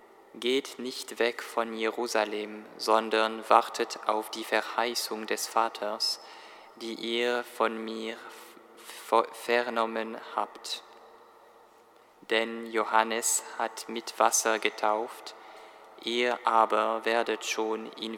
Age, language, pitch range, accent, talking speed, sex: 20-39, German, 110-120 Hz, German, 95 wpm, male